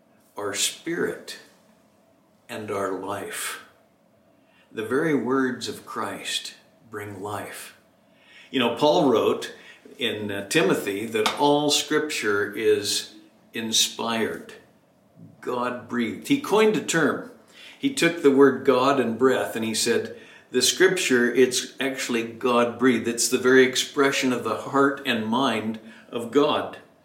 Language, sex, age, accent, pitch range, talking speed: English, male, 60-79, American, 115-150 Hz, 120 wpm